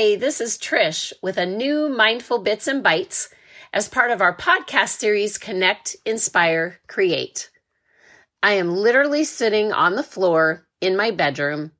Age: 30-49